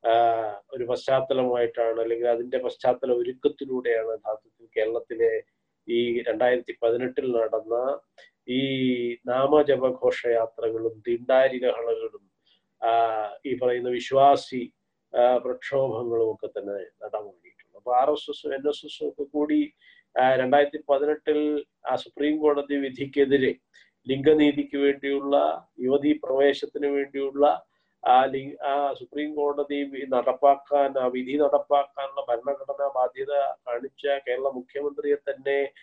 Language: Malayalam